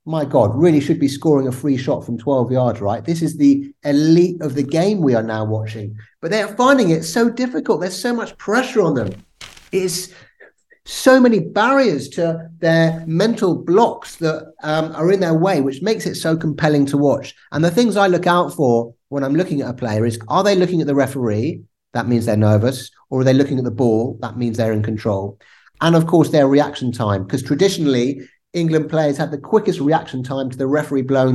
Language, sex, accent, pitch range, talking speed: English, male, British, 120-160 Hz, 215 wpm